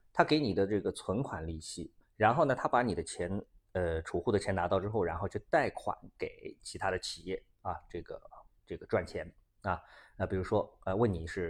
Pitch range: 85-120 Hz